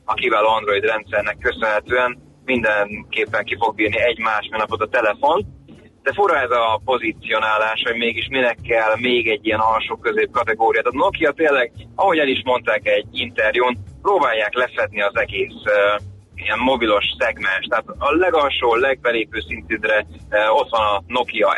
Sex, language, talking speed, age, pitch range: male, Hungarian, 145 wpm, 30-49, 105-125 Hz